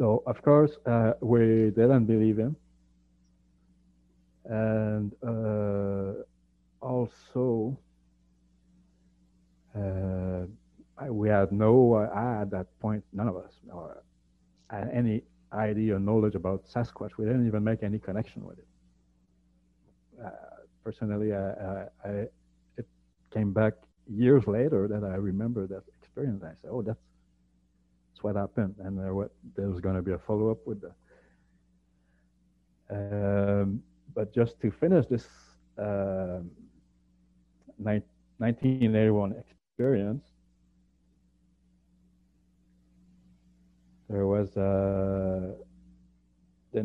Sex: male